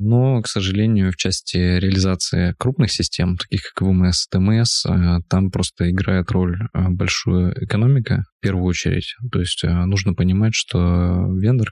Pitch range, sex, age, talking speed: 90-105 Hz, male, 20-39, 140 wpm